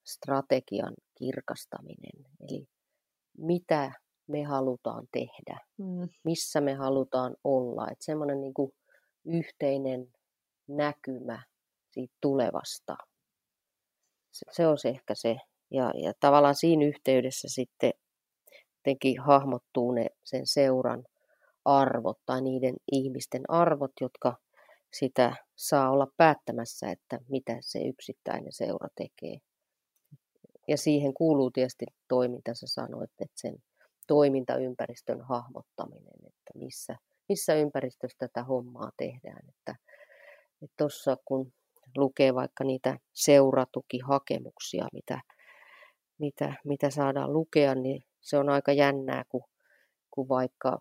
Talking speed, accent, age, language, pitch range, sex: 105 wpm, native, 30-49, Finnish, 130-145 Hz, female